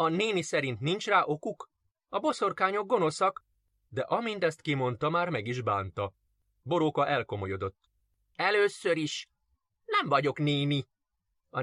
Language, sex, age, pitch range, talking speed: Hungarian, male, 30-49, 145-215 Hz, 130 wpm